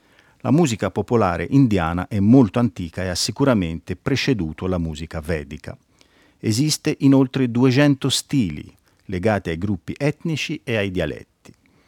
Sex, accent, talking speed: male, native, 130 wpm